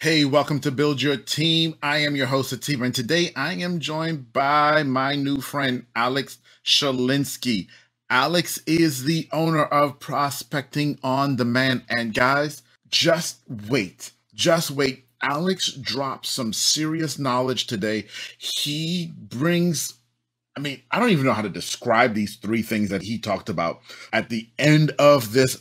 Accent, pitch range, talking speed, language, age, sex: American, 125-155 Hz, 150 wpm, English, 30-49, male